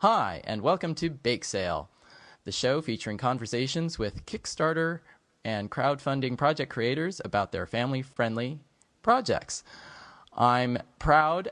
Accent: American